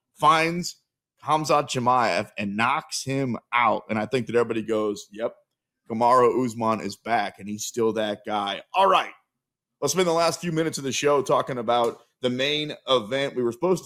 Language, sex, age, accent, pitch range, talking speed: English, male, 30-49, American, 115-160 Hz, 180 wpm